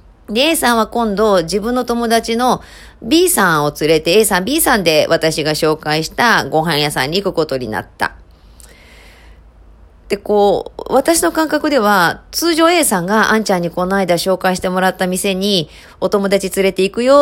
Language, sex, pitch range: Japanese, female, 170-245 Hz